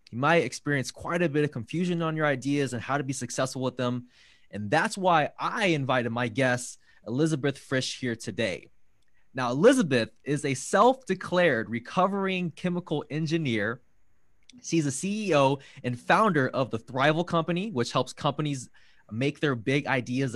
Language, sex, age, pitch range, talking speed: English, male, 20-39, 125-170 Hz, 155 wpm